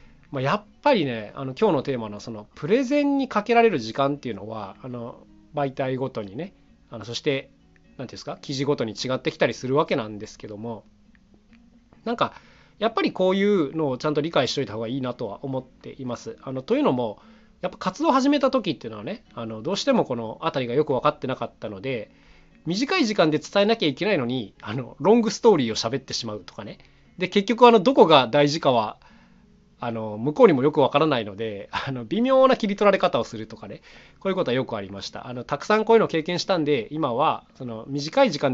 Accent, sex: native, male